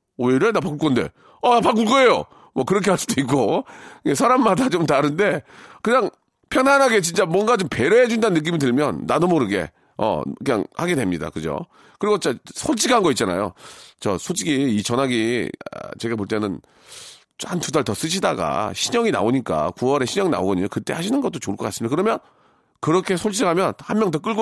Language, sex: Korean, male